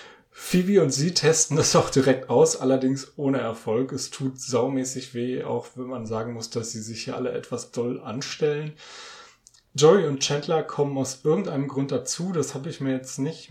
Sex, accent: male, German